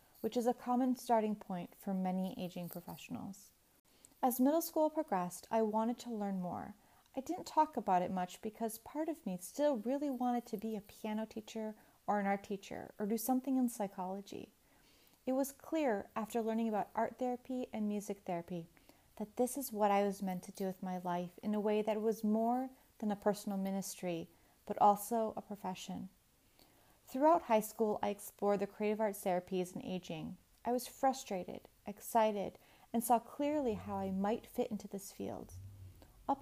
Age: 30-49